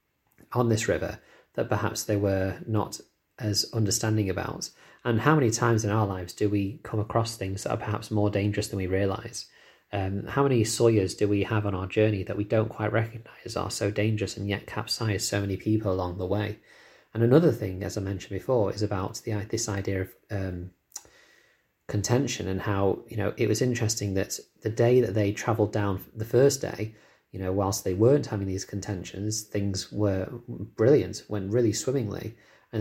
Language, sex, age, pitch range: English, male, 30-49, 100-115 Hz